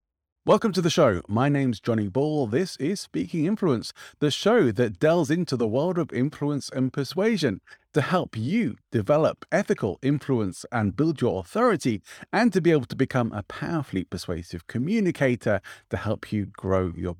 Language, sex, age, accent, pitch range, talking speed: English, male, 30-49, British, 105-140 Hz, 165 wpm